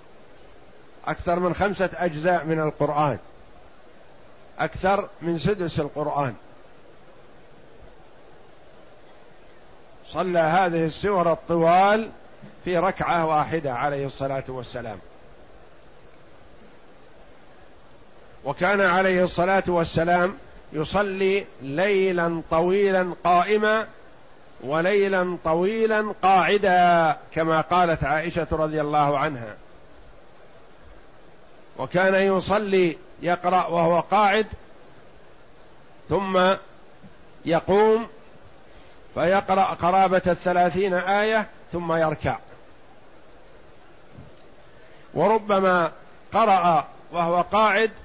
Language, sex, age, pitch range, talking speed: Arabic, male, 50-69, 155-190 Hz, 65 wpm